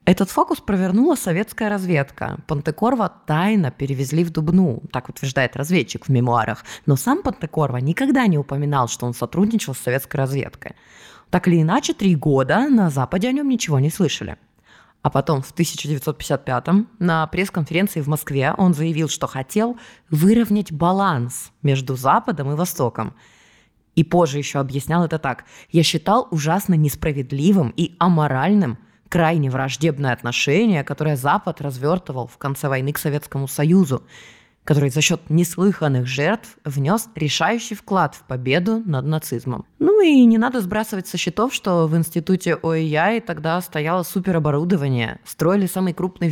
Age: 20-39